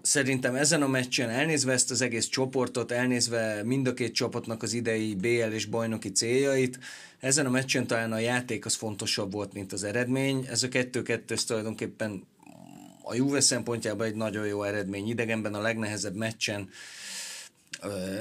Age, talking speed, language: 30-49, 155 wpm, Hungarian